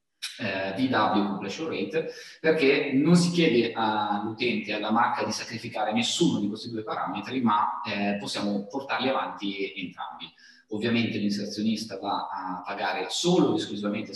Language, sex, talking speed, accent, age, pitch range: Italian, male, 130 wpm, native, 20-39, 100-125 Hz